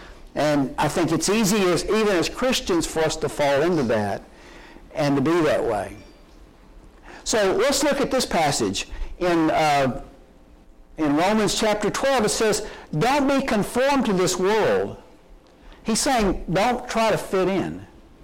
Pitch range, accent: 160-225 Hz, American